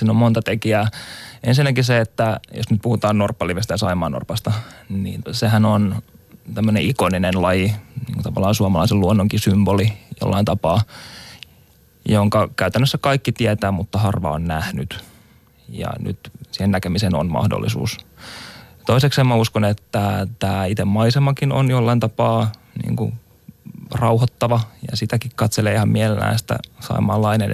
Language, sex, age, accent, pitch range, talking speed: Finnish, male, 20-39, native, 100-120 Hz, 130 wpm